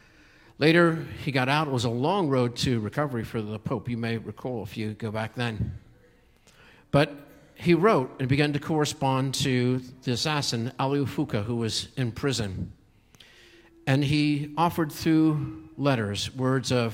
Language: English